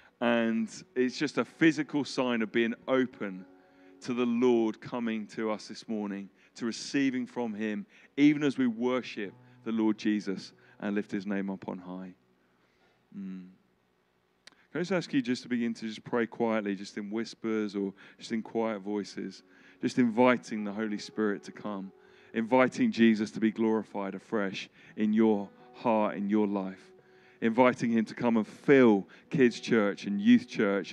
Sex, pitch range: male, 100-125 Hz